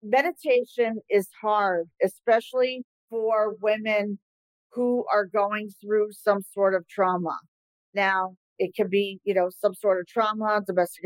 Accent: American